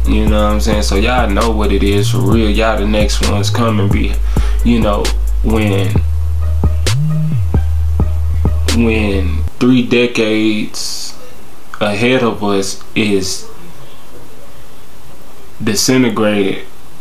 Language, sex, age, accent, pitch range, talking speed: English, male, 20-39, American, 100-115 Hz, 105 wpm